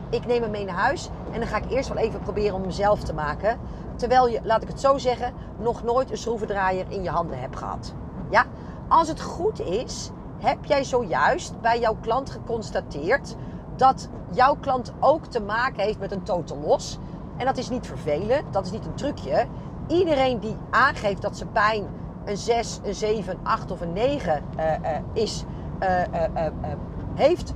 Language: Dutch